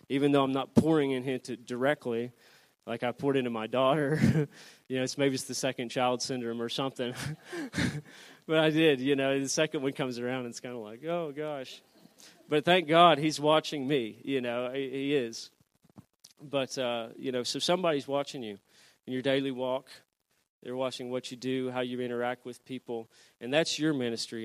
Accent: American